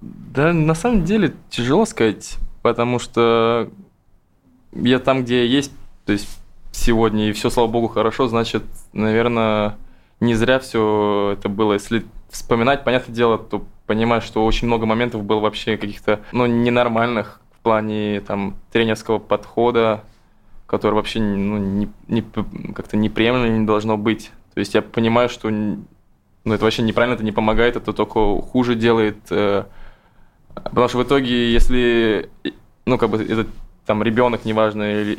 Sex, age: male, 20-39